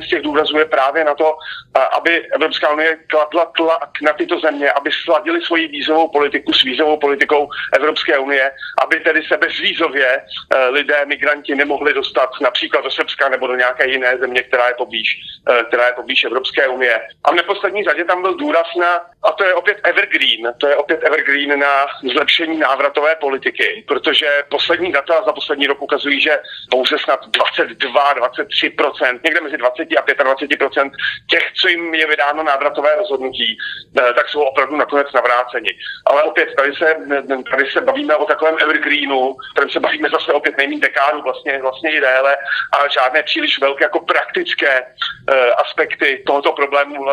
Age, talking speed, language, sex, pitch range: 40-59, 160 wpm, Slovak, male, 140-160 Hz